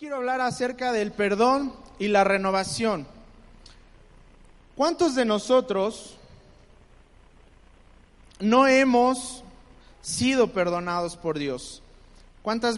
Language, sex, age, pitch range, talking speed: Spanish, male, 30-49, 150-230 Hz, 85 wpm